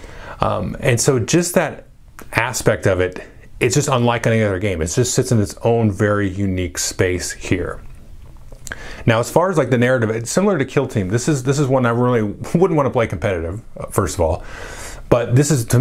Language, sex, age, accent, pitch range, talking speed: English, male, 30-49, American, 100-130 Hz, 210 wpm